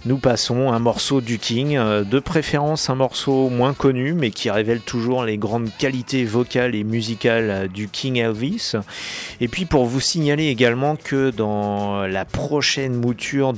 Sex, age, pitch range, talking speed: male, 30-49, 105-130 Hz, 160 wpm